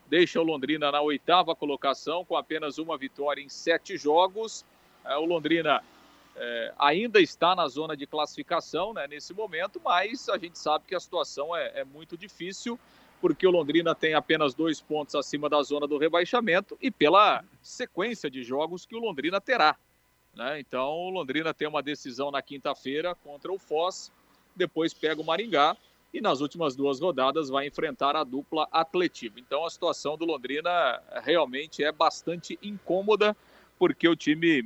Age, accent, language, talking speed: 40-59, Brazilian, Portuguese, 160 wpm